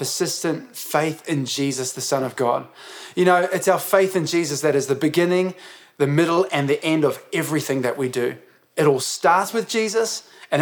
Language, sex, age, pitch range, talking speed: English, male, 20-39, 150-190 Hz, 200 wpm